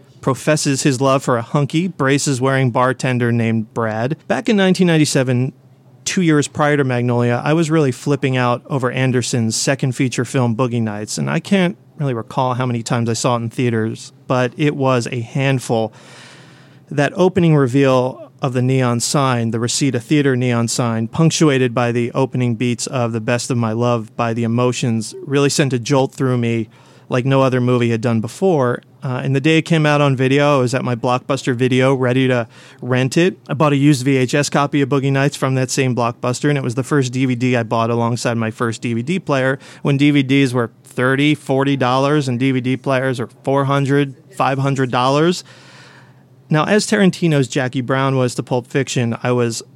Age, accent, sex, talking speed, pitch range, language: 30-49, American, male, 185 wpm, 125-145 Hz, English